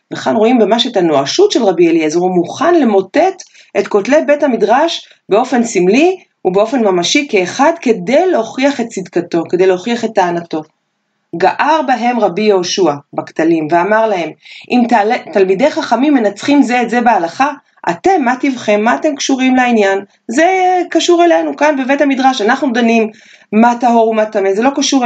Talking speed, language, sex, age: 160 wpm, Hebrew, female, 30-49